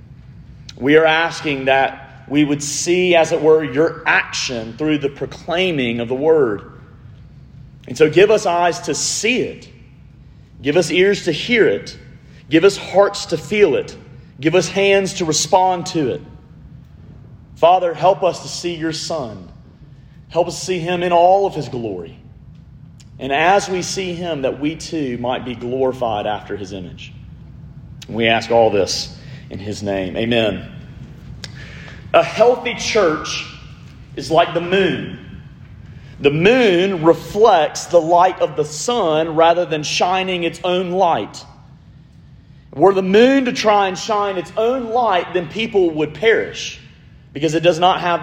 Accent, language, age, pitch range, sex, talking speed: American, English, 40-59, 140-185 Hz, male, 155 wpm